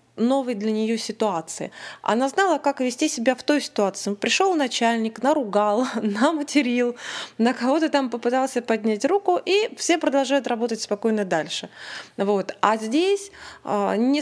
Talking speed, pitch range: 135 wpm, 205-260 Hz